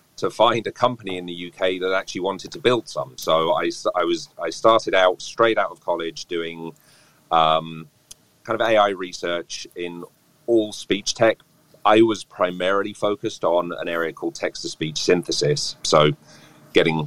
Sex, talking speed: male, 170 wpm